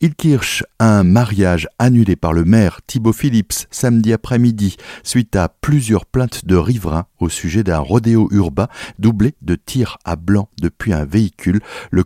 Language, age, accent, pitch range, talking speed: French, 60-79, French, 85-110 Hz, 150 wpm